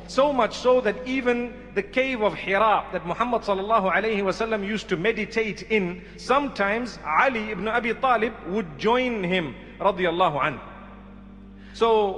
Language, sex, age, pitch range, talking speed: English, male, 40-59, 195-235 Hz, 135 wpm